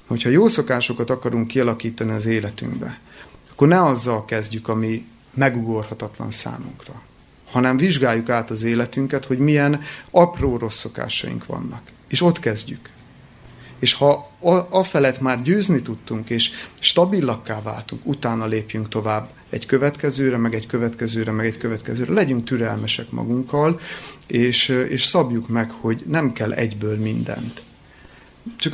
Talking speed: 130 wpm